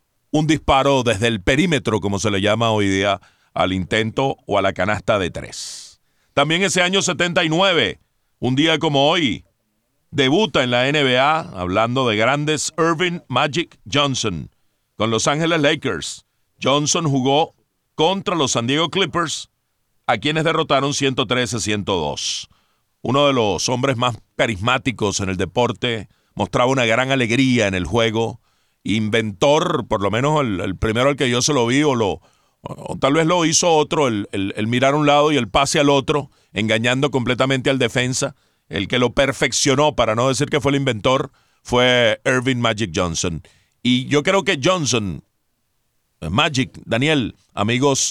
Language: Spanish